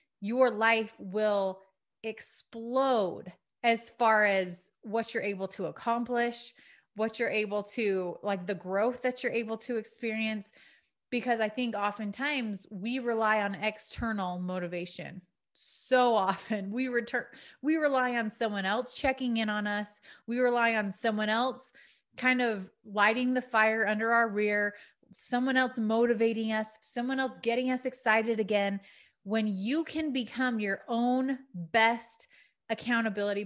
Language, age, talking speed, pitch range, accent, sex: English, 30-49, 140 wpm, 205-245 Hz, American, female